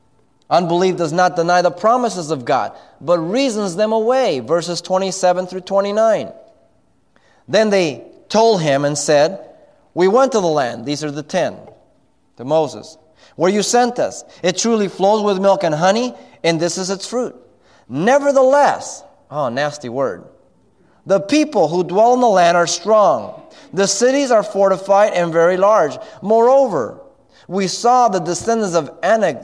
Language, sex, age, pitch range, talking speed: English, male, 30-49, 155-220 Hz, 155 wpm